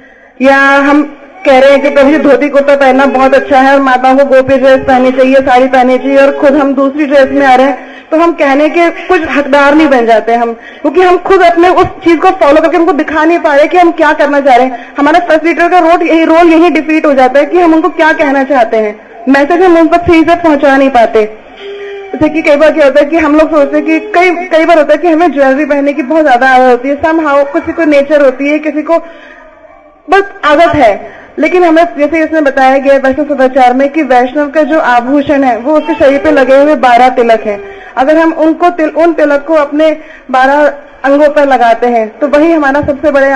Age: 20-39